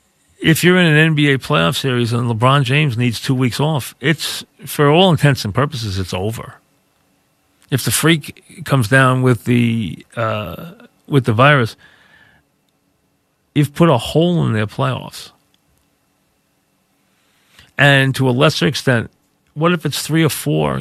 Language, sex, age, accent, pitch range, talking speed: English, male, 40-59, American, 125-155 Hz, 145 wpm